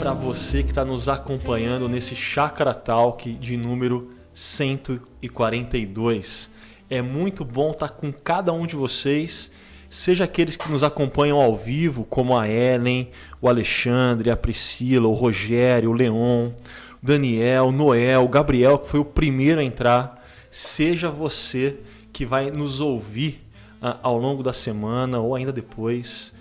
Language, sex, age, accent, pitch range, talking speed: Portuguese, male, 20-39, Brazilian, 120-145 Hz, 145 wpm